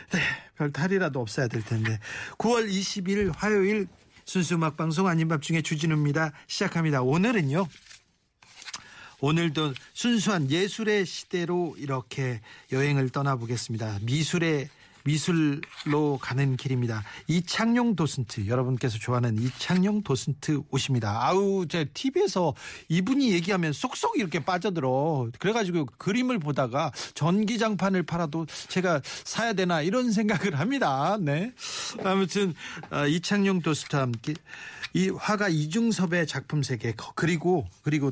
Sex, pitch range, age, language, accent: male, 135-190 Hz, 40-59, Korean, native